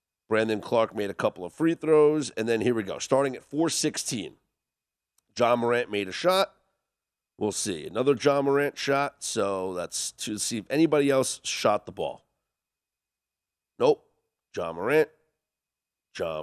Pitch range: 115-190 Hz